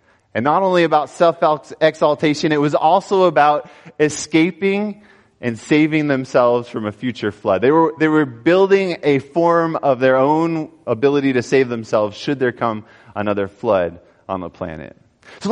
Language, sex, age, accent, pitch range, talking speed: English, male, 30-49, American, 120-160 Hz, 150 wpm